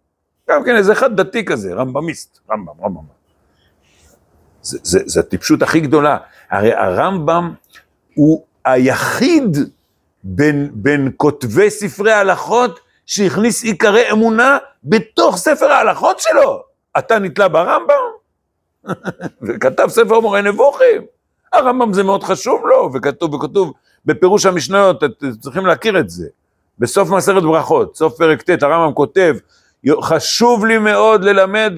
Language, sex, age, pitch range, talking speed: Hebrew, male, 60-79, 155-240 Hz, 120 wpm